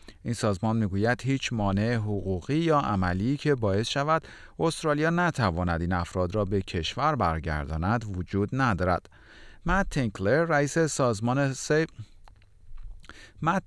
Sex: male